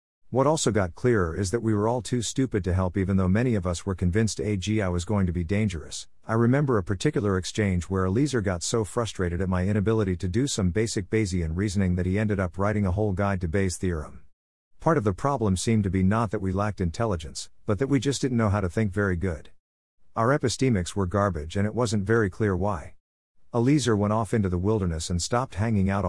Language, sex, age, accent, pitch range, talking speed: English, male, 50-69, American, 90-115 Hz, 230 wpm